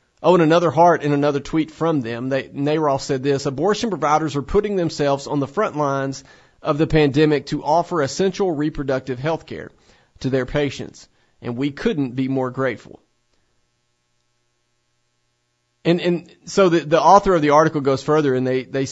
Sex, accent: male, American